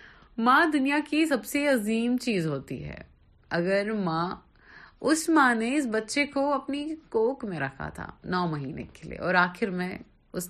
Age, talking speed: 30-49, 170 wpm